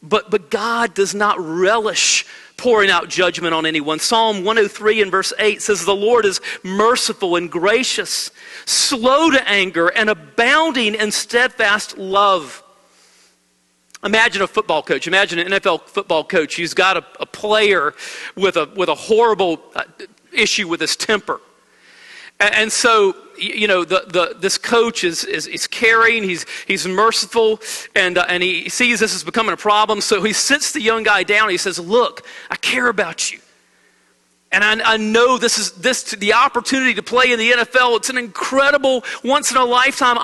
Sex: male